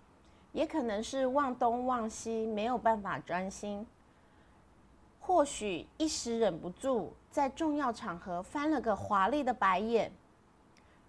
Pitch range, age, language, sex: 180-265 Hz, 30-49, Chinese, female